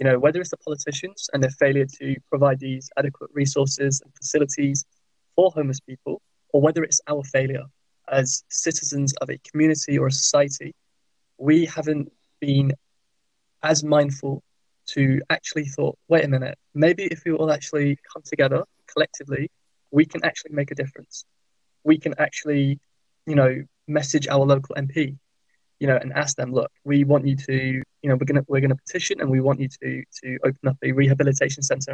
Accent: British